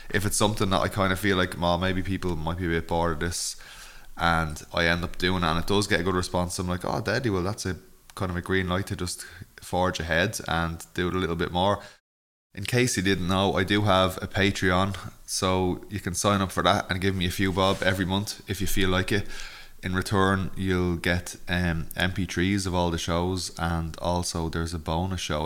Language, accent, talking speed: English, Irish, 240 wpm